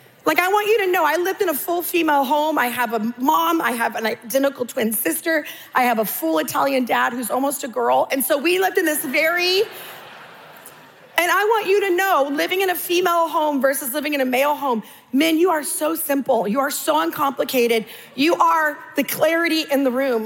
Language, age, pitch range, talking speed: English, 30-49, 255-345 Hz, 215 wpm